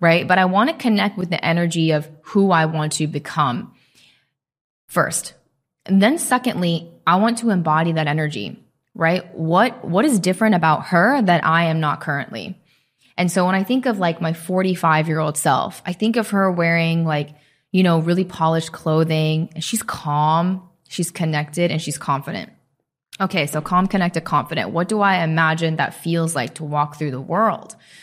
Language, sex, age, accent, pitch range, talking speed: English, female, 20-39, American, 155-200 Hz, 180 wpm